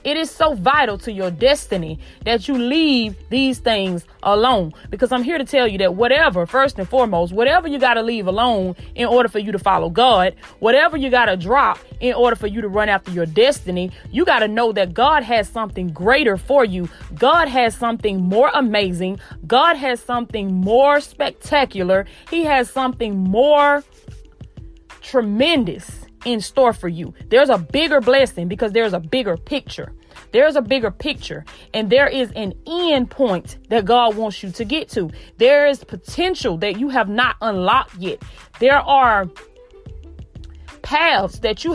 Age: 30-49